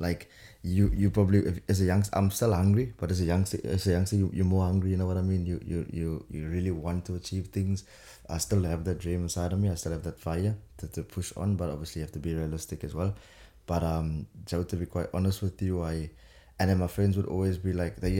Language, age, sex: English, 20-39, male